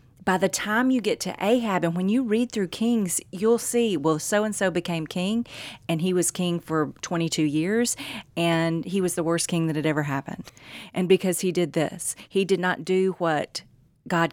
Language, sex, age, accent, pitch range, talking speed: English, female, 40-59, American, 155-205 Hz, 195 wpm